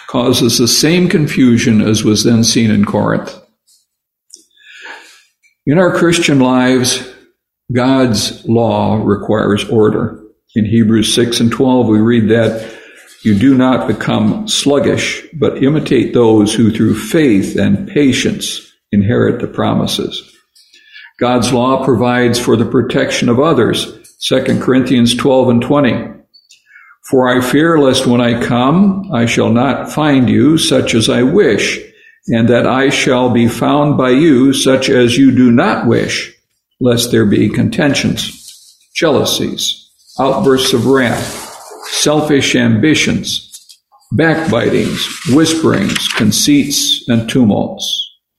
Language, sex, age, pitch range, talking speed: English, male, 60-79, 115-140 Hz, 125 wpm